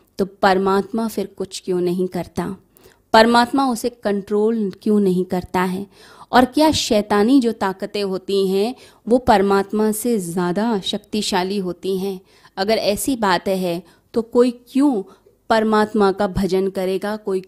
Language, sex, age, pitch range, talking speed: Hindi, female, 20-39, 190-235 Hz, 135 wpm